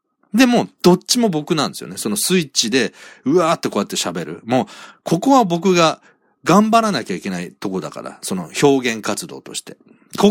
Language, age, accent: Japanese, 40-59, native